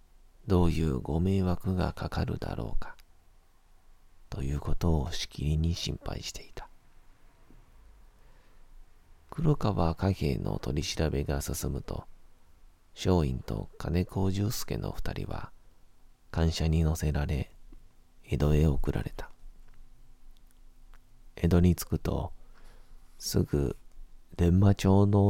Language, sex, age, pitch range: Japanese, male, 40-59, 80-95 Hz